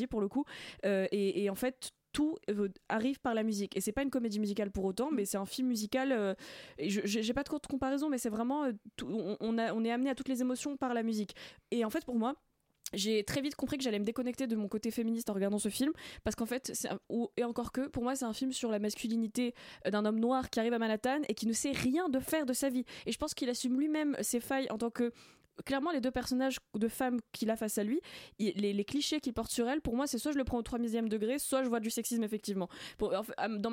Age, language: 20-39, French